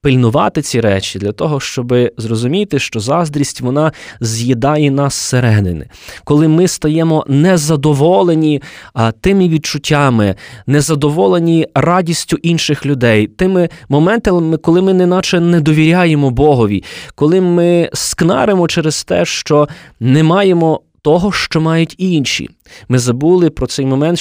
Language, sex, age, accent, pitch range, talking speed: Ukrainian, male, 20-39, native, 125-175 Hz, 120 wpm